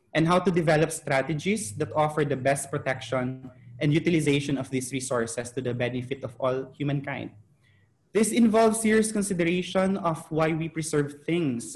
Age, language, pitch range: 20-39, English, 130-160 Hz